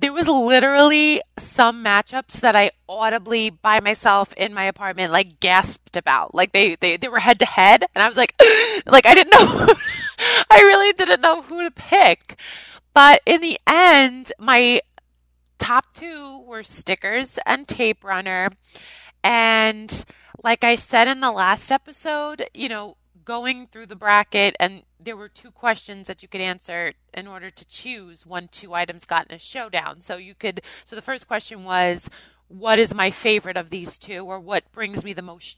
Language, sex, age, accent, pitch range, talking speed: English, female, 20-39, American, 180-240 Hz, 180 wpm